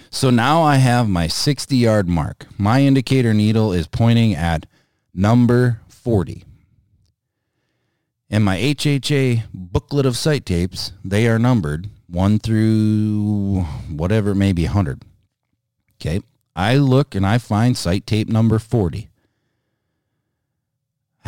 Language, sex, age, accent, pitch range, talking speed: English, male, 40-59, American, 100-125 Hz, 115 wpm